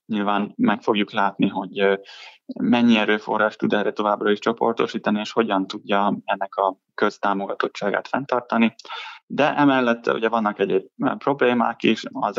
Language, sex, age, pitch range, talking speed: Hungarian, male, 20-39, 100-115 Hz, 130 wpm